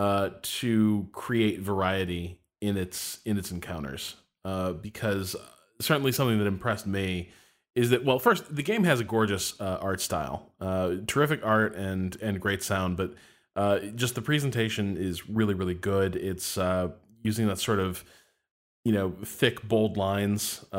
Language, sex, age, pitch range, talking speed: English, male, 20-39, 95-110 Hz, 160 wpm